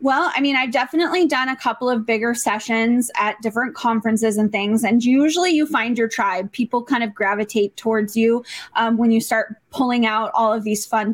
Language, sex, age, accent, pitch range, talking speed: English, female, 20-39, American, 220-265 Hz, 205 wpm